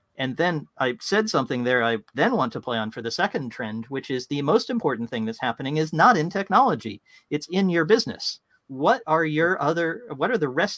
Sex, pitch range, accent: male, 125-165 Hz, American